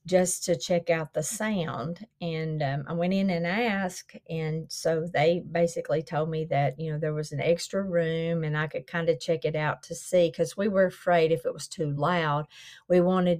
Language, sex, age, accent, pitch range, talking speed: English, female, 40-59, American, 150-175 Hz, 215 wpm